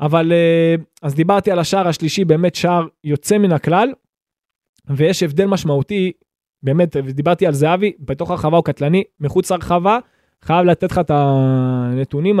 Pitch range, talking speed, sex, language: 150-205 Hz, 150 wpm, male, Hebrew